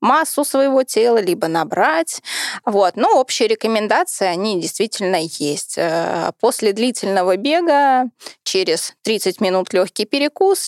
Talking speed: 110 wpm